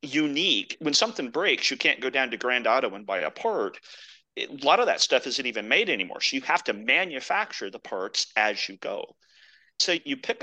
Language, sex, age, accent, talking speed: English, male, 40-59, American, 215 wpm